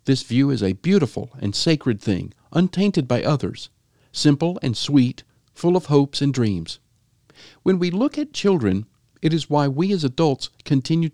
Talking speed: 165 wpm